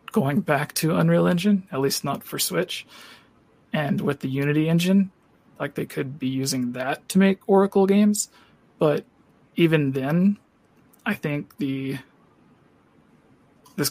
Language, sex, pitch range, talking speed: English, male, 135-170 Hz, 140 wpm